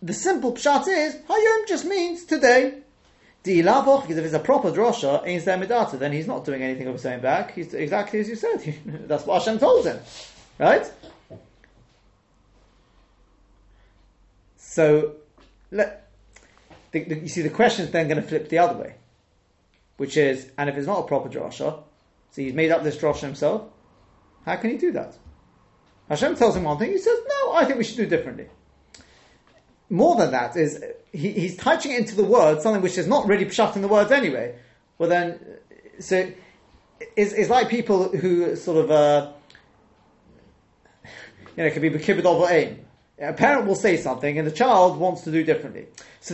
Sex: male